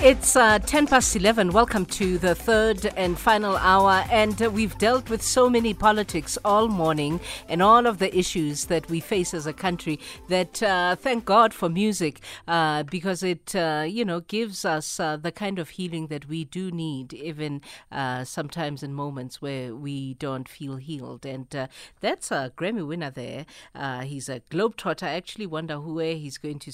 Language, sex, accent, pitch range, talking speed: English, female, South African, 150-200 Hz, 190 wpm